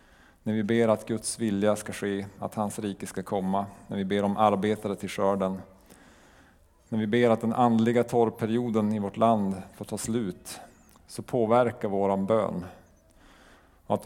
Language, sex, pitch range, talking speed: Swedish, male, 100-115 Hz, 160 wpm